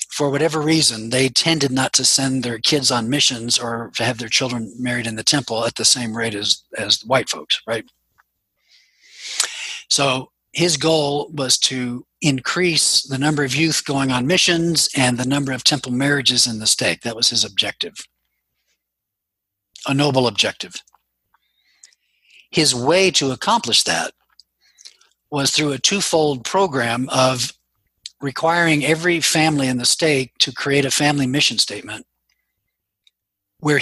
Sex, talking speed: male, 150 wpm